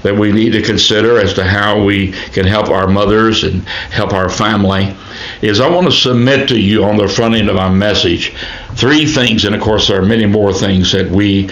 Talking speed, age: 225 wpm, 60-79